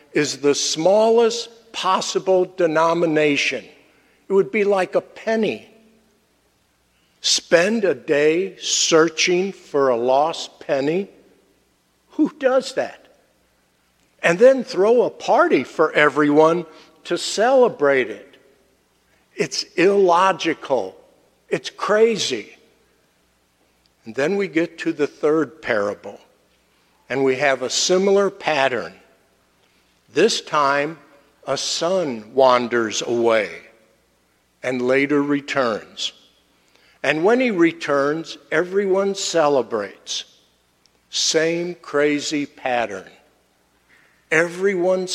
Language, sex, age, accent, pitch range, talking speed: English, male, 60-79, American, 120-185 Hz, 90 wpm